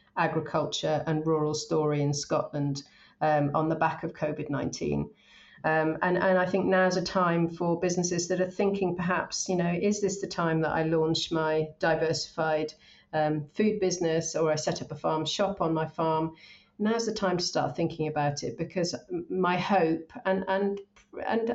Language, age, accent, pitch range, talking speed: English, 40-59, British, 155-185 Hz, 180 wpm